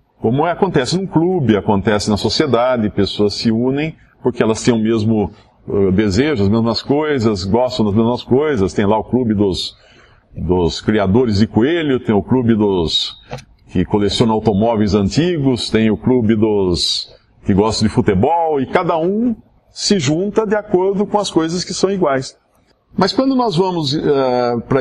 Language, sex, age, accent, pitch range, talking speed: English, male, 50-69, Brazilian, 105-155 Hz, 160 wpm